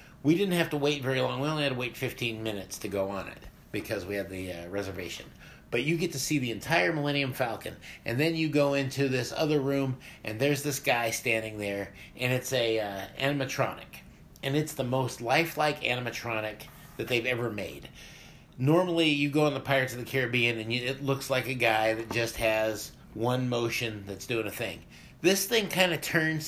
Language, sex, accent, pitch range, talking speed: English, male, American, 120-155 Hz, 210 wpm